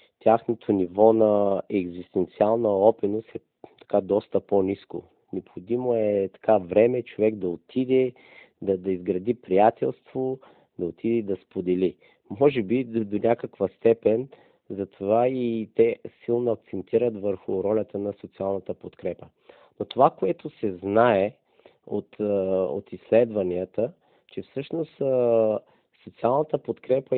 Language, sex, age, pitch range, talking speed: Bulgarian, male, 40-59, 100-125 Hz, 115 wpm